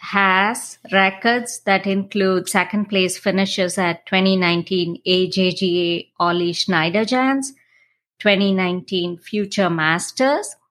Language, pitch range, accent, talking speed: English, 180-205 Hz, Indian, 85 wpm